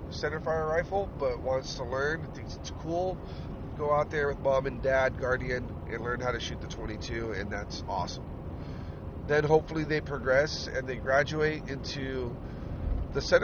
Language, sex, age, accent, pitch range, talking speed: English, male, 40-59, American, 100-145 Hz, 165 wpm